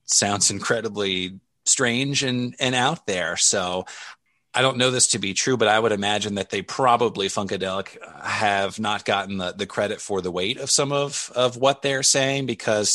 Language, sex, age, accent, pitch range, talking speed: English, male, 30-49, American, 100-130 Hz, 185 wpm